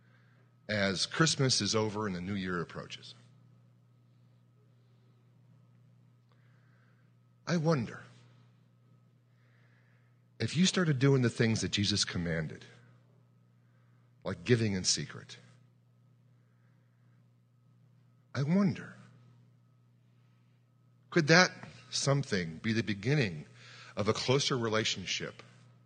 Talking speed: 85 wpm